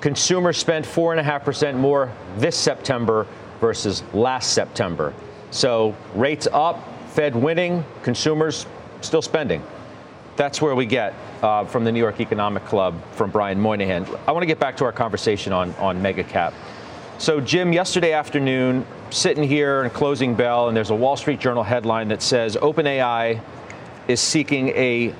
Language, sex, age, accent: English, male, 40-59, American